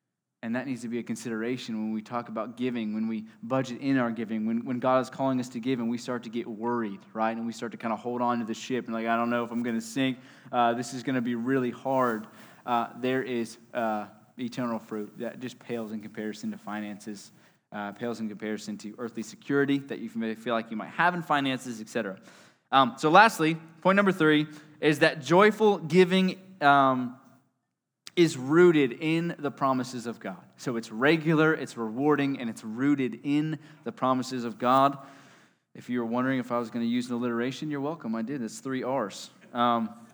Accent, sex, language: American, male, English